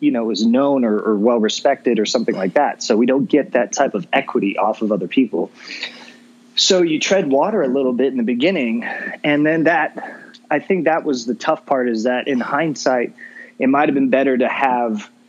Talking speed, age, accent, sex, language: 210 wpm, 20-39, American, male, English